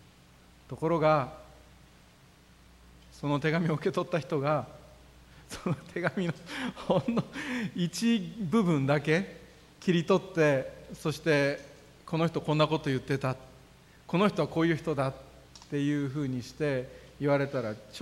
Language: Japanese